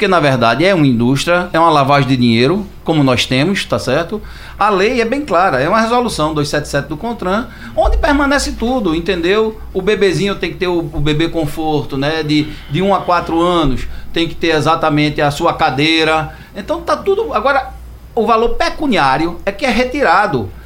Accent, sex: Brazilian, male